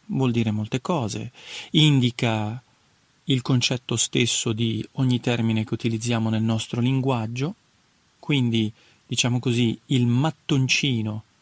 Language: Italian